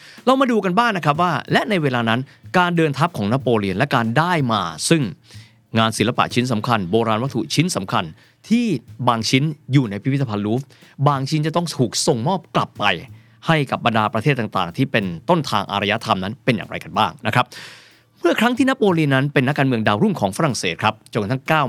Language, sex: Thai, male